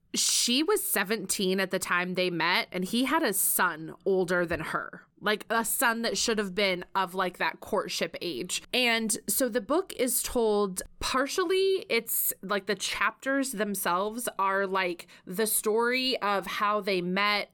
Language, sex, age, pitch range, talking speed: English, female, 20-39, 185-230 Hz, 165 wpm